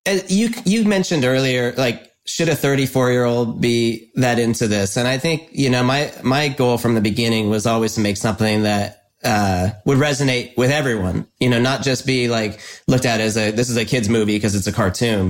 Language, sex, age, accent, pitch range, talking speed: English, male, 30-49, American, 110-135 Hz, 220 wpm